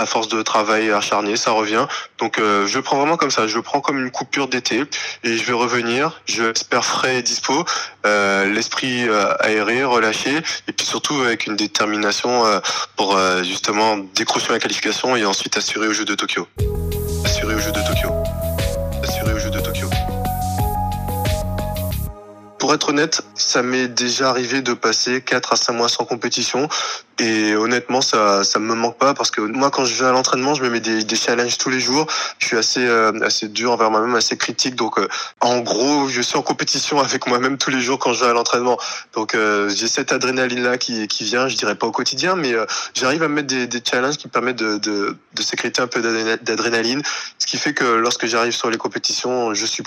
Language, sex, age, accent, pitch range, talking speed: French, male, 20-39, French, 105-125 Hz, 210 wpm